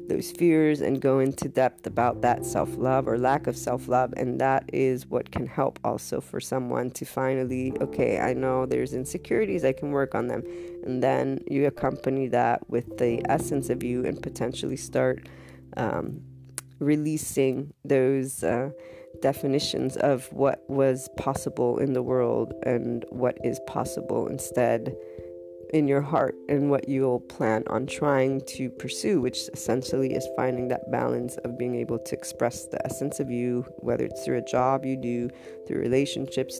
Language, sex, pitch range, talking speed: English, female, 120-135 Hz, 160 wpm